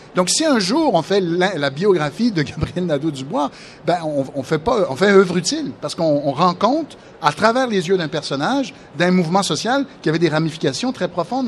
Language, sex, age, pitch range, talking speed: French, male, 60-79, 150-210 Hz, 210 wpm